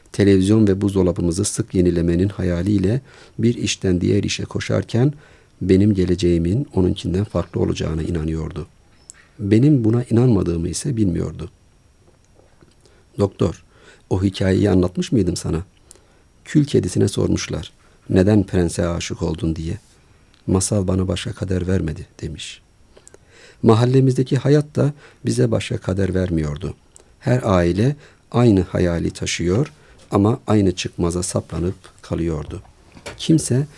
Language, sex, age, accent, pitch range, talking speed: Turkish, male, 50-69, native, 85-115 Hz, 105 wpm